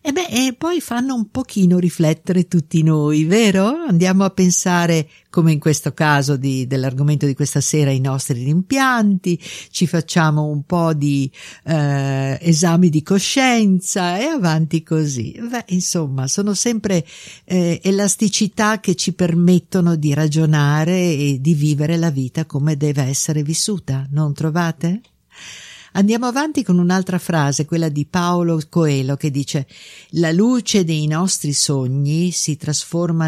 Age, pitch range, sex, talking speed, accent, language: 50-69, 140-190 Hz, female, 140 wpm, native, Italian